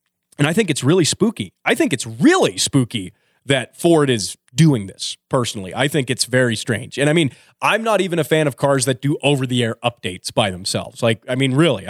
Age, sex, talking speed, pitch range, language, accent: 30-49, male, 210 wpm, 125-185 Hz, English, American